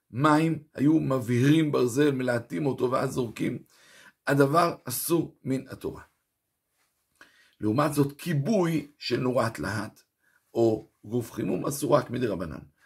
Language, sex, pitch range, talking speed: Hebrew, male, 120-145 Hz, 115 wpm